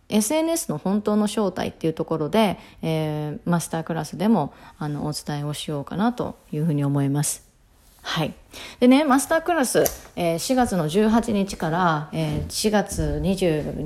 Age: 30-49